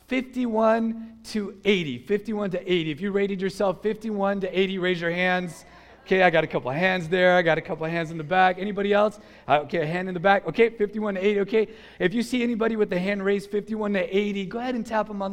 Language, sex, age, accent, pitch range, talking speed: English, male, 30-49, American, 175-225 Hz, 245 wpm